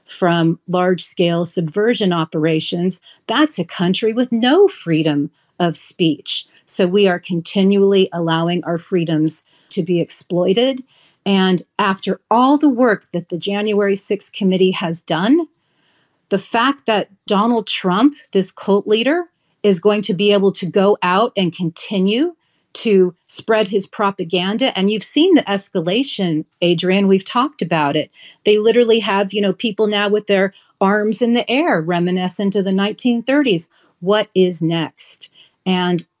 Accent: American